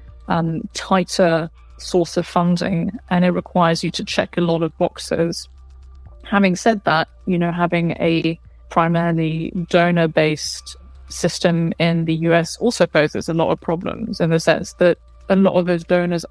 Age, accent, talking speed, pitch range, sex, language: 20-39, British, 160 wpm, 160-175 Hz, female, English